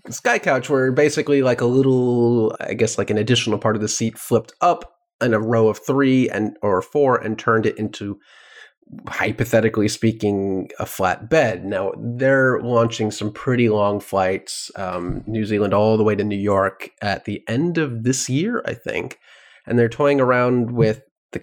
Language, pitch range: English, 105-130 Hz